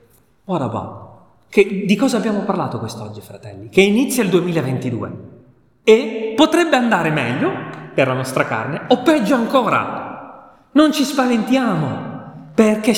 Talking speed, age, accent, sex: 115 wpm, 30-49, native, male